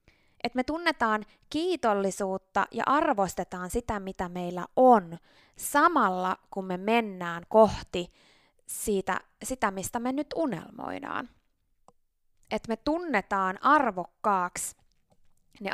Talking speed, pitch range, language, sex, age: 100 wpm, 185-230 Hz, Finnish, female, 20-39